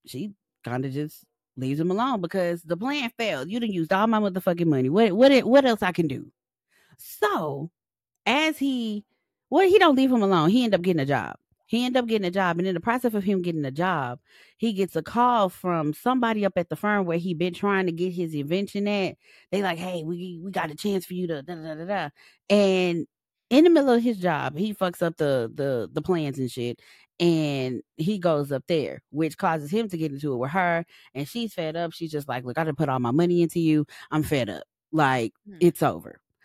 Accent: American